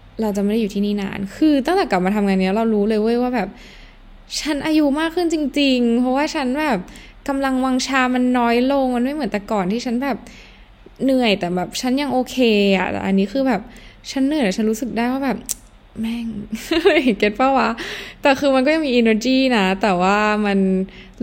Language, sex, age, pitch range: Thai, female, 10-29, 195-255 Hz